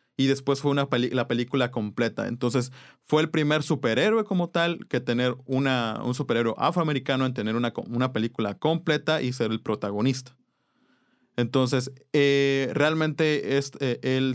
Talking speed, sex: 140 wpm, male